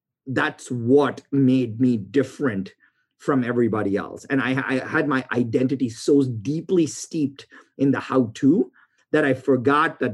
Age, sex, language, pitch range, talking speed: 30-49, male, English, 125-145 Hz, 140 wpm